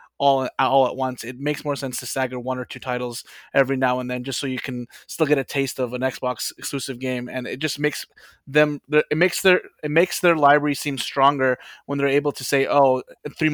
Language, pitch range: English, 135-165 Hz